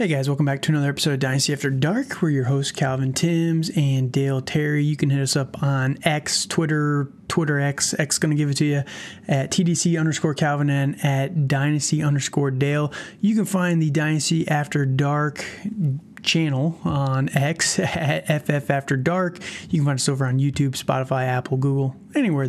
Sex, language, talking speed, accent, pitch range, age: male, English, 185 wpm, American, 140-170 Hz, 30-49